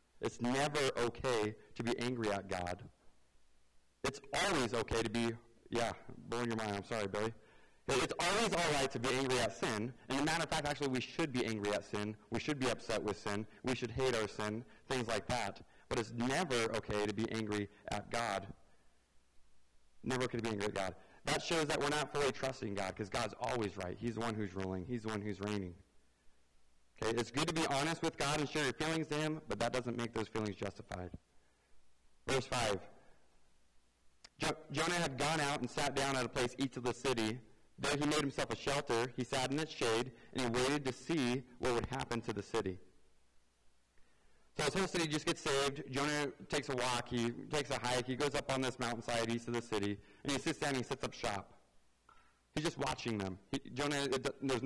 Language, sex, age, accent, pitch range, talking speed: English, male, 30-49, American, 100-135 Hz, 215 wpm